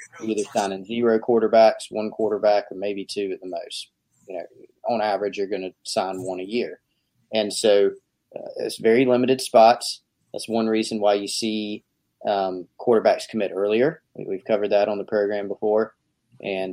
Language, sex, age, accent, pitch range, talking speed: English, male, 30-49, American, 100-125 Hz, 170 wpm